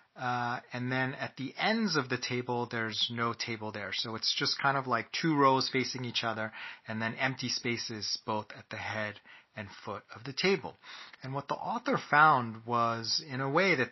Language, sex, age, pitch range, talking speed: English, male, 30-49, 115-135 Hz, 205 wpm